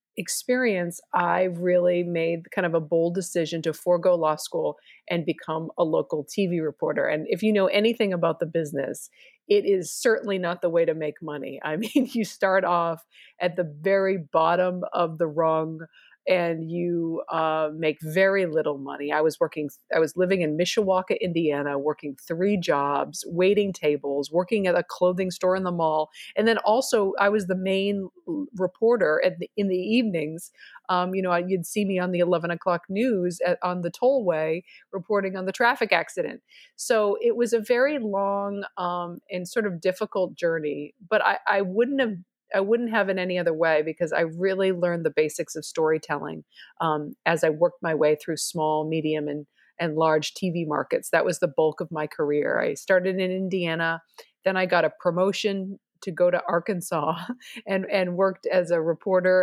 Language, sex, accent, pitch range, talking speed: English, female, American, 165-195 Hz, 180 wpm